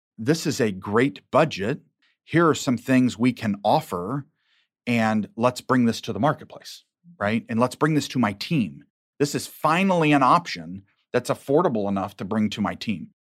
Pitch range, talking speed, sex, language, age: 115-145 Hz, 180 wpm, male, English, 40-59